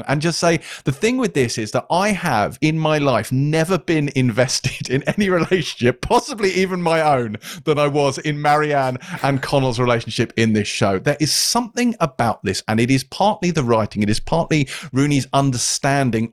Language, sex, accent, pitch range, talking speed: English, male, British, 115-155 Hz, 185 wpm